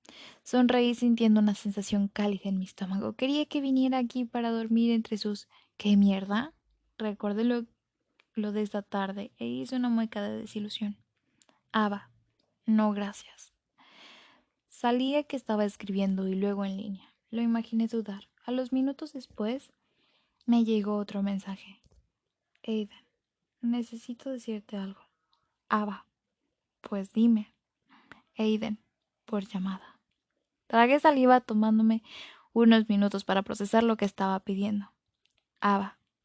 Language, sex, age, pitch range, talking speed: Spanish, female, 10-29, 205-240 Hz, 125 wpm